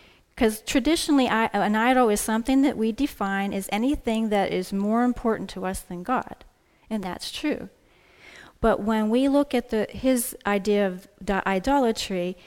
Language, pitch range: English, 195-250 Hz